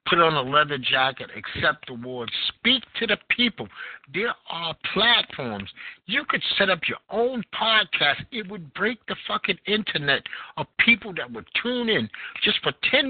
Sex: male